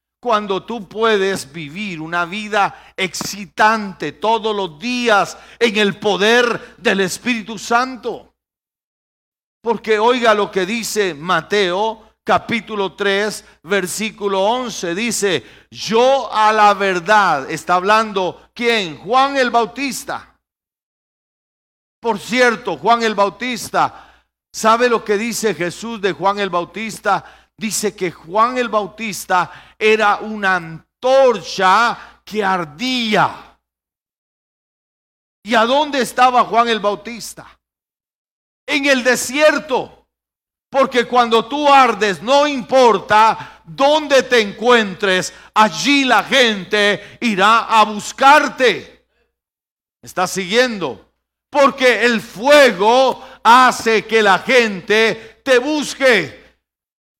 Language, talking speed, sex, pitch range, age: Spanish, 100 wpm, male, 195-240 Hz, 50-69